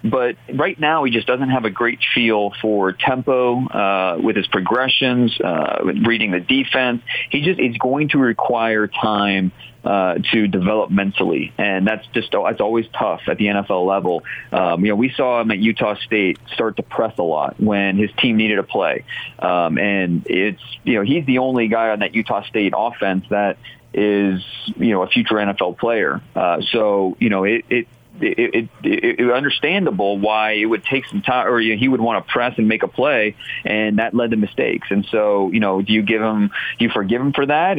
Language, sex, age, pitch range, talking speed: English, male, 30-49, 105-130 Hz, 210 wpm